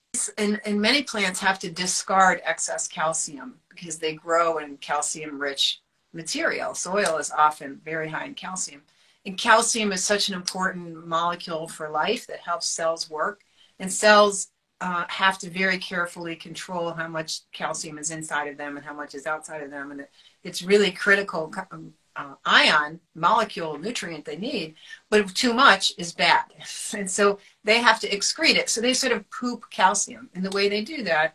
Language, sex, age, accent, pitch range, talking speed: English, female, 40-59, American, 165-215 Hz, 180 wpm